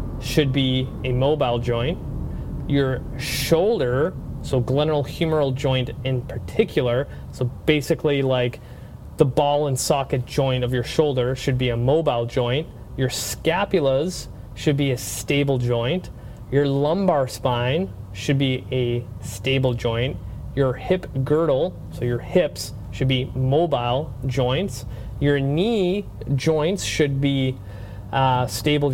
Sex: male